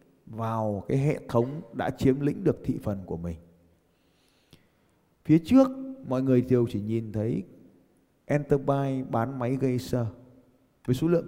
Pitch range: 105-135 Hz